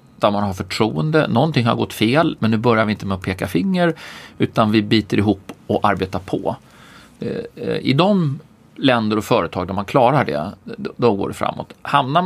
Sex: male